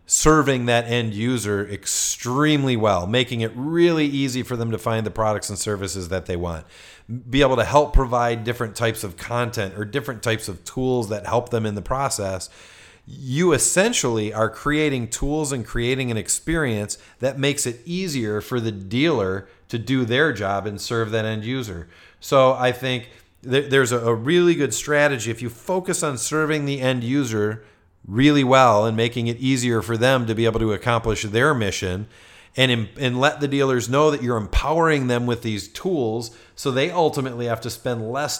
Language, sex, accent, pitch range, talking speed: English, male, American, 110-130 Hz, 185 wpm